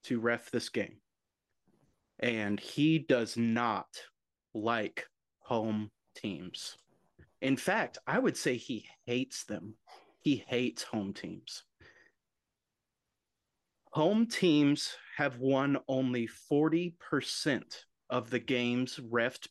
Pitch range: 110-135 Hz